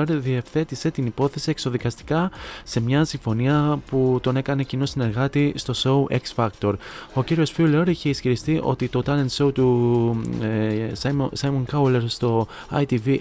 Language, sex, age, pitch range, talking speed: Greek, male, 20-39, 120-145 Hz, 145 wpm